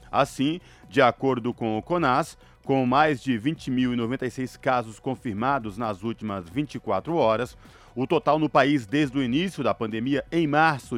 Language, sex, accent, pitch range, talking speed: Portuguese, male, Brazilian, 120-155 Hz, 150 wpm